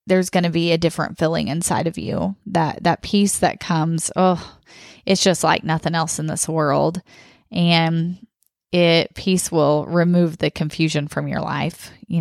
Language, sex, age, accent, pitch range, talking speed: English, female, 20-39, American, 160-185 Hz, 170 wpm